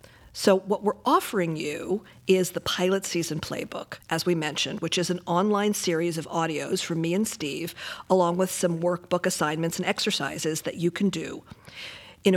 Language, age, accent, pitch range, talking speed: English, 50-69, American, 170-210 Hz, 175 wpm